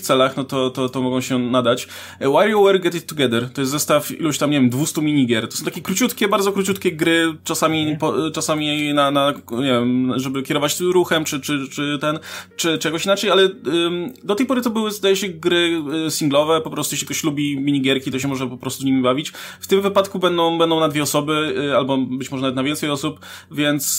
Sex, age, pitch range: male, 20-39, 130-165 Hz